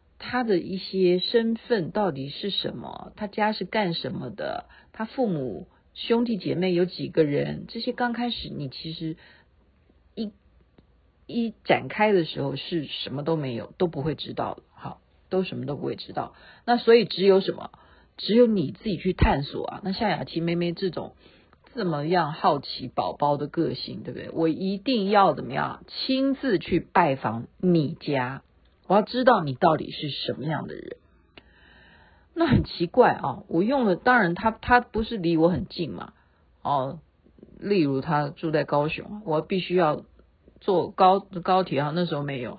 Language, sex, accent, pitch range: Chinese, female, native, 145-215 Hz